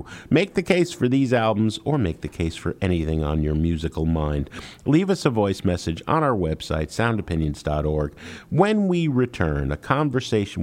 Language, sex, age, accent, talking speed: English, male, 50-69, American, 170 wpm